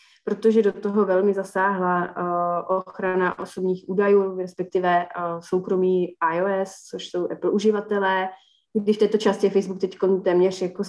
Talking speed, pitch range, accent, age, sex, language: 140 wpm, 175-205 Hz, native, 30-49, female, Czech